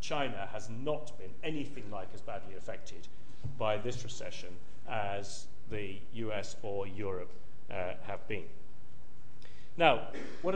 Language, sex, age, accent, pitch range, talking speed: English, male, 40-59, British, 105-135 Hz, 125 wpm